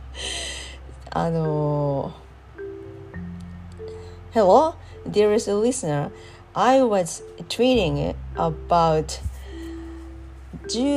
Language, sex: Japanese, female